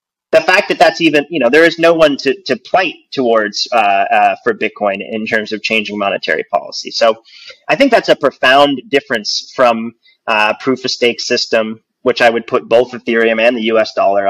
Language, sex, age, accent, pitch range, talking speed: English, male, 30-49, American, 115-155 Hz, 200 wpm